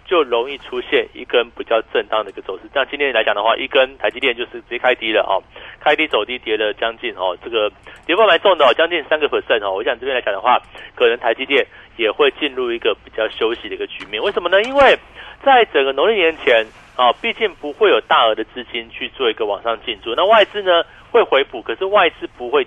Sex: male